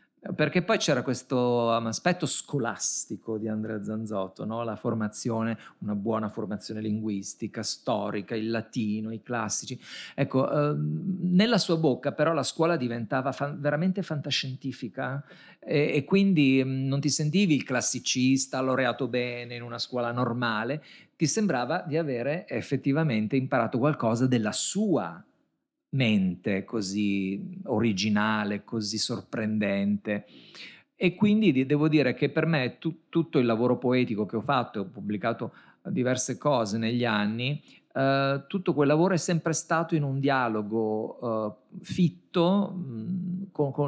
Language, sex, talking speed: Italian, male, 135 wpm